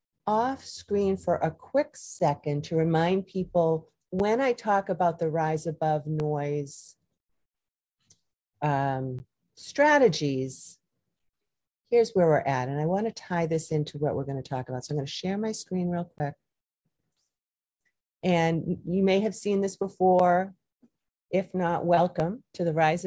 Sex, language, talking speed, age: female, English, 150 wpm, 40-59